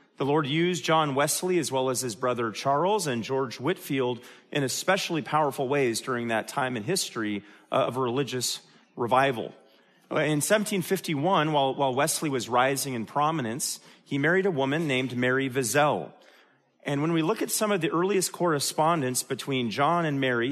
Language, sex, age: English, male, 40-59